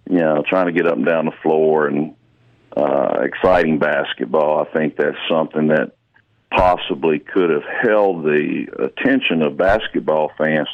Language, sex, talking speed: English, male, 155 wpm